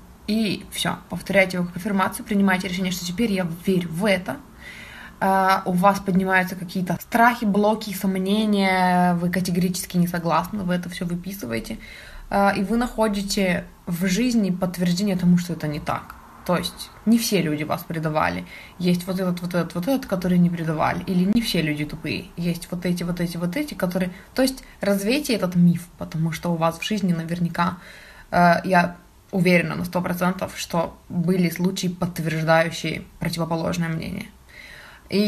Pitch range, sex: 170-195 Hz, female